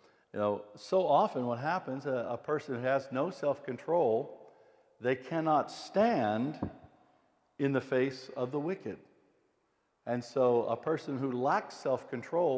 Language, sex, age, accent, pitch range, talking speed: English, male, 60-79, American, 120-150 Hz, 135 wpm